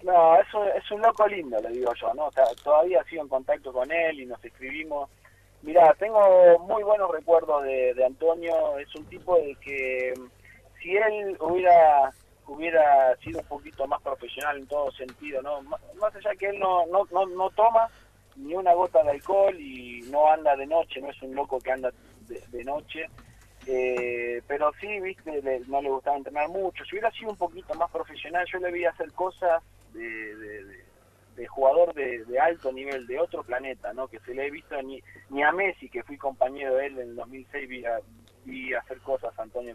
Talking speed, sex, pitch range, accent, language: 205 wpm, male, 125-170 Hz, Argentinian, Spanish